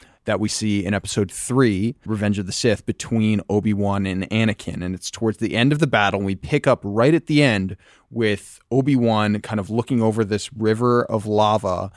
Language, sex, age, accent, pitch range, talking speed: English, male, 20-39, American, 95-115 Hz, 200 wpm